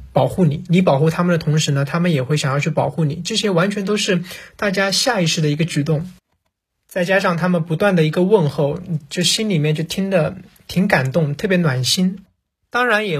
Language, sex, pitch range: Chinese, male, 150-185 Hz